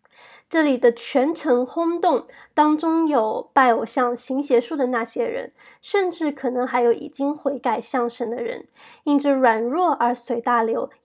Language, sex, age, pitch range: Chinese, female, 20-39, 240-305 Hz